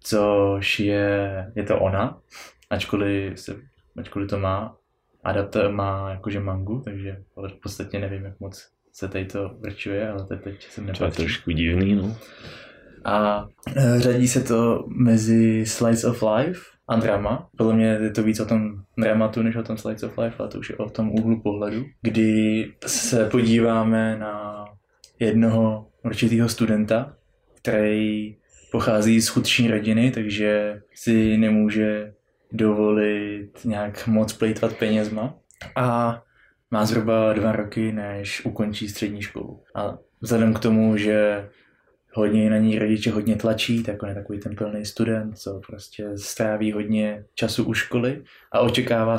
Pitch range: 105-115 Hz